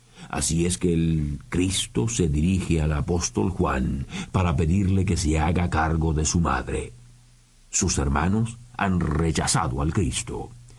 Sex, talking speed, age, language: male, 140 wpm, 60-79, Spanish